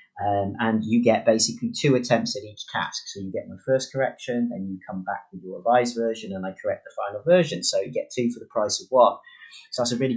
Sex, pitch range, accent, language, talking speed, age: male, 105-140 Hz, British, English, 255 wpm, 30-49